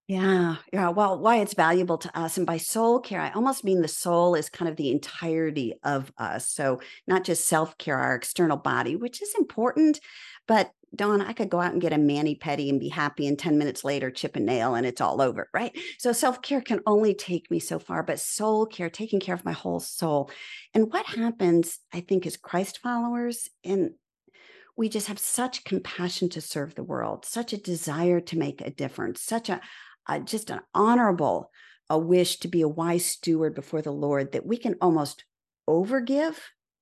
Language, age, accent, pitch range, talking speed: English, 50-69, American, 160-230 Hz, 200 wpm